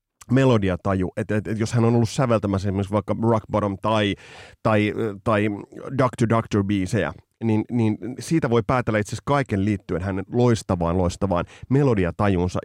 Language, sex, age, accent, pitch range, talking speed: Finnish, male, 30-49, native, 100-130 Hz, 155 wpm